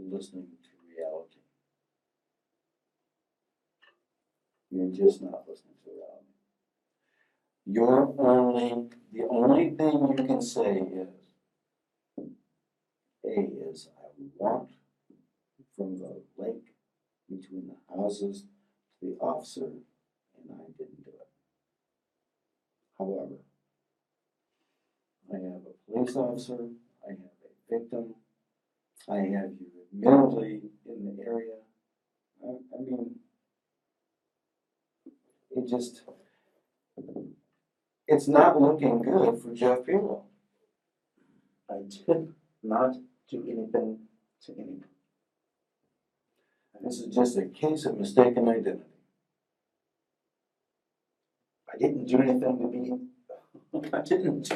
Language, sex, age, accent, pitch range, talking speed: English, male, 60-79, American, 100-140 Hz, 95 wpm